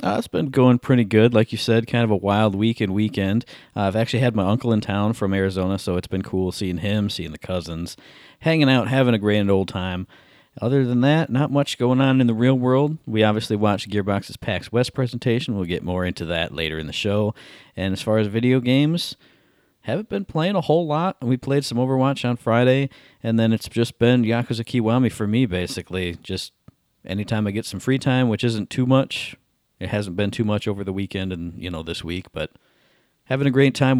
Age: 40-59